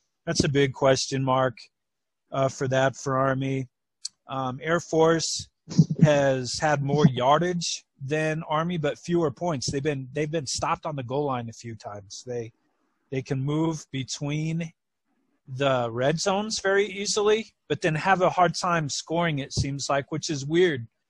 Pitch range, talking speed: 130-160 Hz, 170 wpm